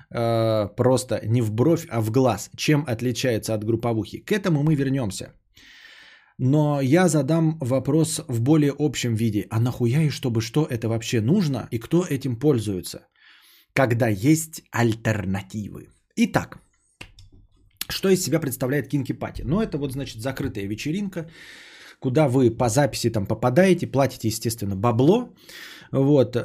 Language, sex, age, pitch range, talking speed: Bulgarian, male, 20-39, 115-160 Hz, 140 wpm